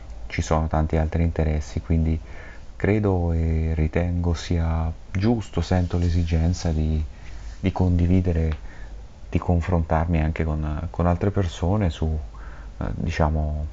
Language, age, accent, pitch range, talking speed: Italian, 30-49, native, 80-95 Hz, 115 wpm